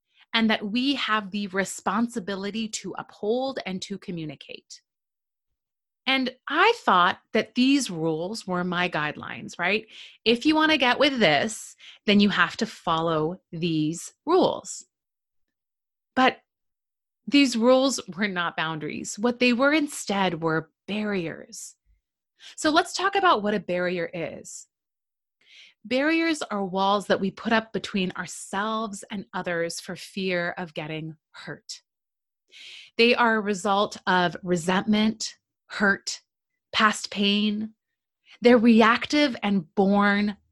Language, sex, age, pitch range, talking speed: English, female, 30-49, 180-240 Hz, 125 wpm